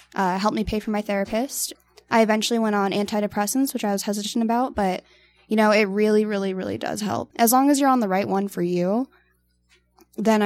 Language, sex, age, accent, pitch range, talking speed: English, female, 10-29, American, 195-245 Hz, 210 wpm